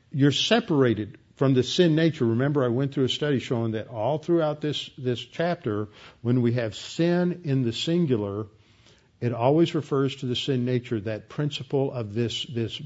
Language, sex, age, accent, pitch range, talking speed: English, male, 50-69, American, 115-140 Hz, 175 wpm